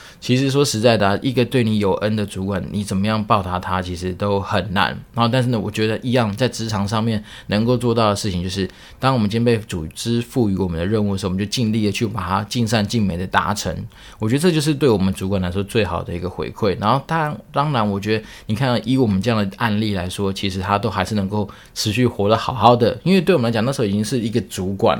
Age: 20-39